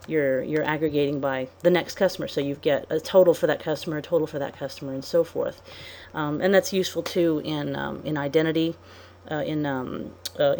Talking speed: 210 wpm